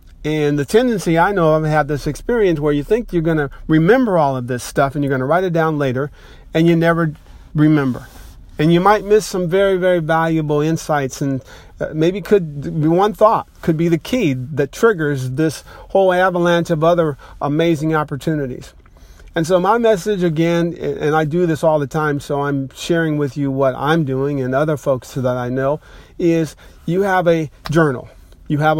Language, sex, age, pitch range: English, male, 50-69, 135-170 Hz